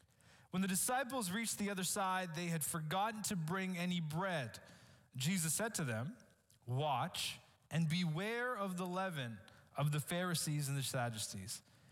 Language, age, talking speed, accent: English, 20-39, 150 wpm, American